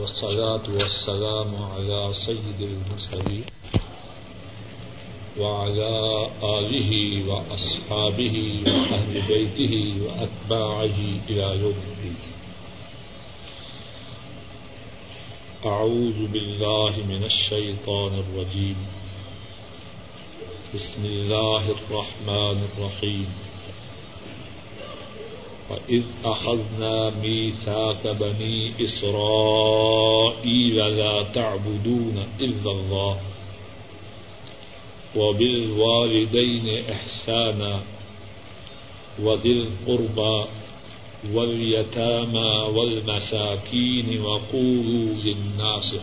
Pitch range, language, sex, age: 100-110 Hz, Urdu, male, 50-69